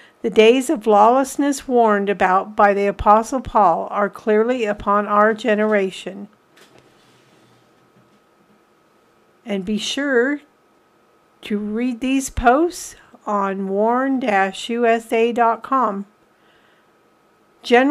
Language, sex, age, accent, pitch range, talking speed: English, female, 50-69, American, 205-250 Hz, 80 wpm